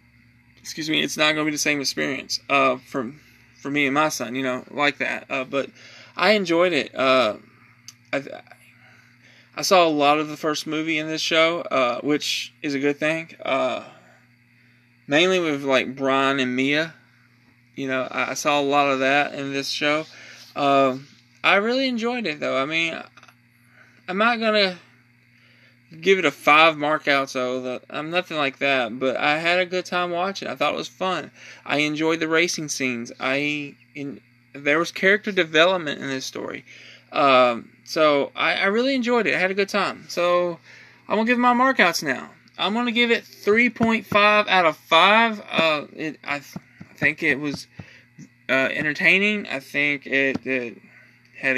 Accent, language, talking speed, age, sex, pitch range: American, English, 185 wpm, 20-39, male, 130-170 Hz